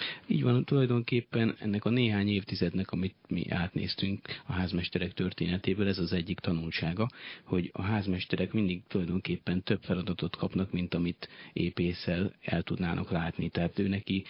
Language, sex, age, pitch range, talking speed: Hungarian, male, 30-49, 90-100 Hz, 145 wpm